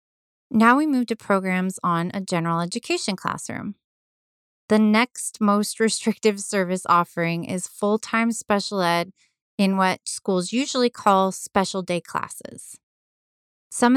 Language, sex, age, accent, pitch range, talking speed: English, female, 20-39, American, 180-230 Hz, 125 wpm